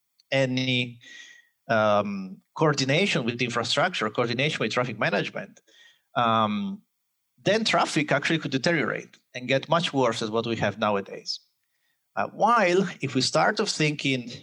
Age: 30-49